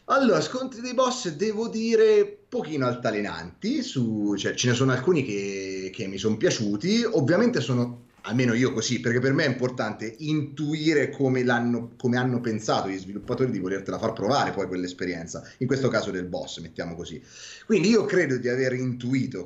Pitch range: 100-150 Hz